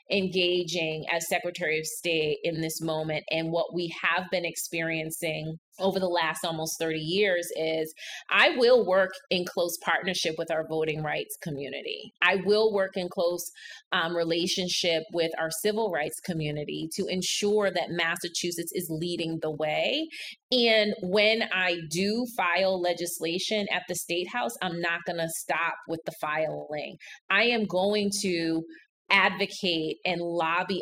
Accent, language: American, English